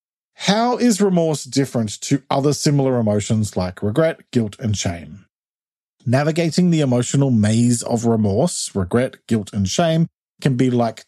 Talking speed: 140 wpm